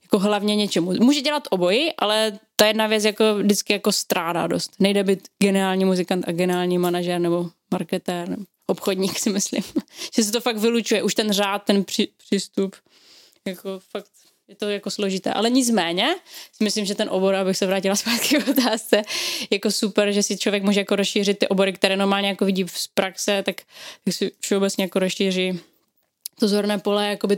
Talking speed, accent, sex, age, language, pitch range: 185 wpm, native, female, 20-39, Czech, 185-215 Hz